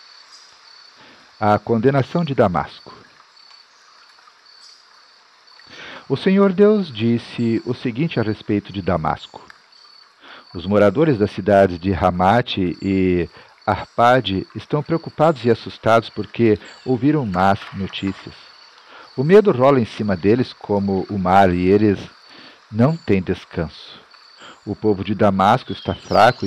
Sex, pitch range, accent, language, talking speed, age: male, 95-130 Hz, Brazilian, Portuguese, 115 wpm, 50-69